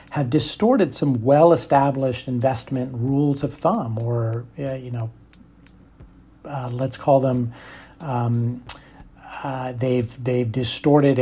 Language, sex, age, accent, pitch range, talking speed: English, male, 40-59, American, 125-165 Hz, 135 wpm